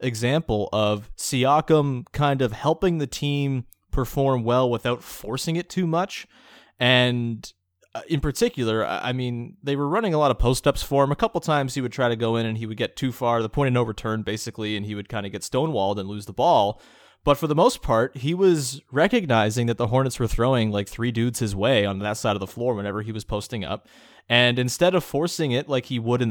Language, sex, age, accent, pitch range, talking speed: English, male, 30-49, American, 115-150 Hz, 225 wpm